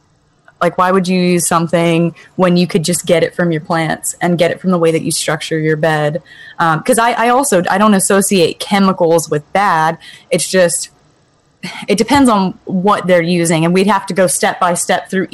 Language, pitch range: English, 165-190 Hz